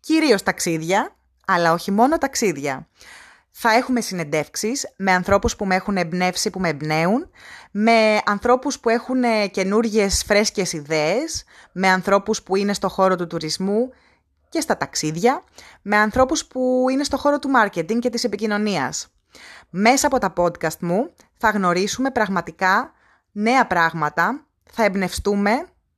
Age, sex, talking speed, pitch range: 20-39, female, 135 wpm, 180-235 Hz